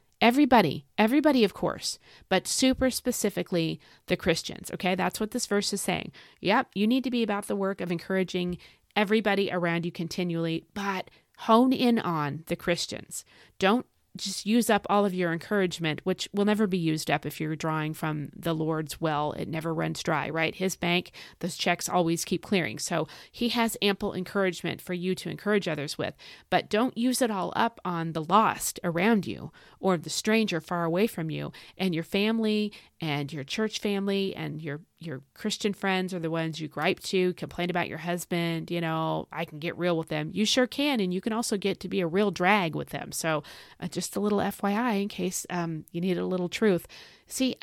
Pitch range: 170-215 Hz